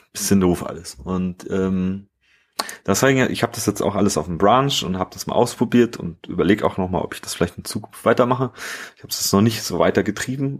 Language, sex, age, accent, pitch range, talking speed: German, male, 30-49, German, 95-120 Hz, 220 wpm